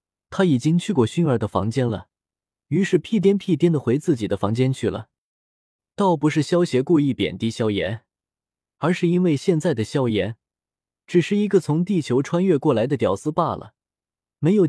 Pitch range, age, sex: 115-175 Hz, 20-39, male